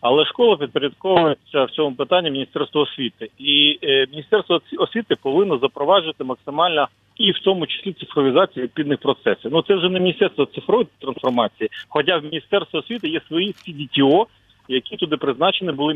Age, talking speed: 40-59, 150 wpm